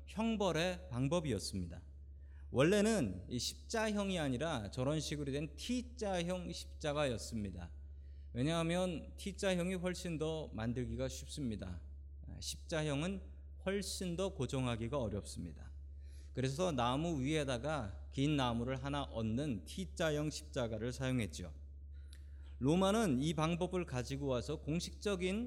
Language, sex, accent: Korean, male, native